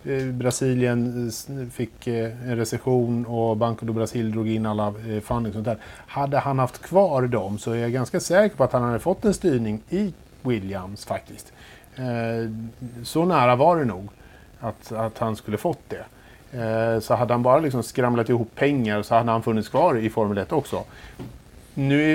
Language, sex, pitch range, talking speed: Swedish, male, 110-130 Hz, 170 wpm